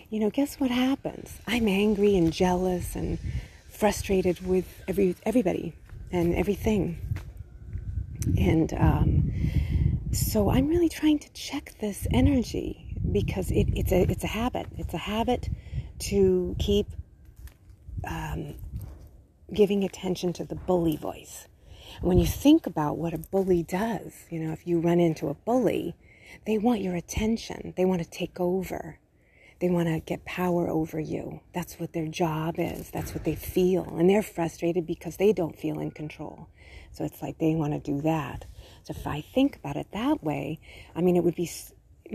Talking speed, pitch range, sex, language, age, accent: 165 wpm, 150-190 Hz, female, English, 30-49, American